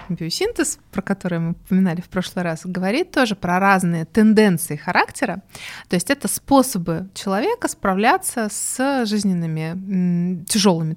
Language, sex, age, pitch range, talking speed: Russian, female, 20-39, 175-225 Hz, 125 wpm